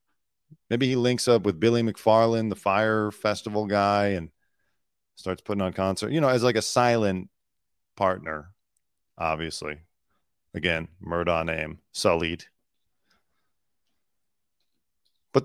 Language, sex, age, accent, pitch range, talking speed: English, male, 40-59, American, 85-105 Hz, 115 wpm